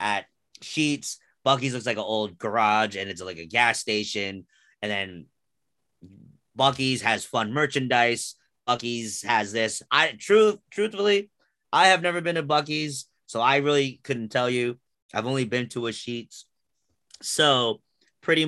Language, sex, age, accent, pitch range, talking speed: English, male, 30-49, American, 105-135 Hz, 150 wpm